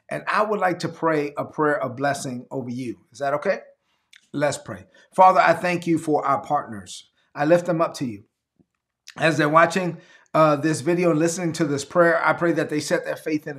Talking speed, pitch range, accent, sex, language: 215 wpm, 150-175 Hz, American, male, English